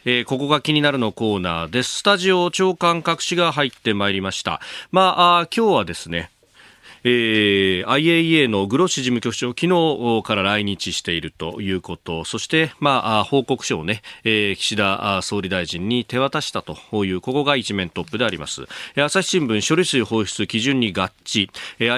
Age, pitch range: 40-59, 100-135 Hz